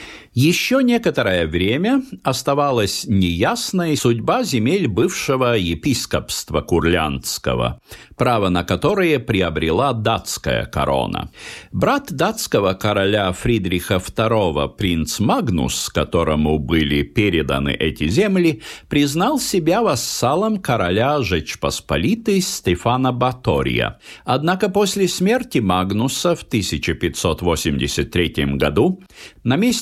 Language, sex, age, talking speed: Russian, male, 50-69, 85 wpm